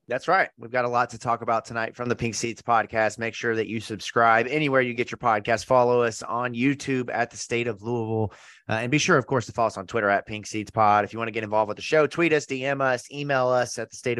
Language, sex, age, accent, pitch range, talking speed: English, male, 30-49, American, 110-135 Hz, 285 wpm